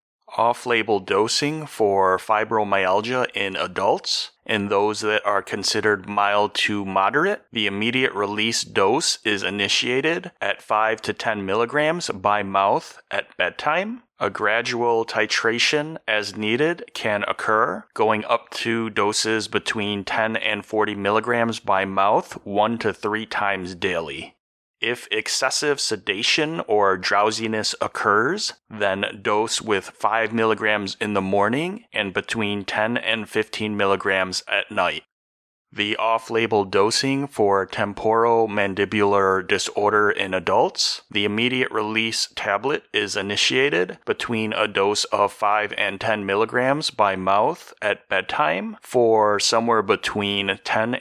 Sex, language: male, English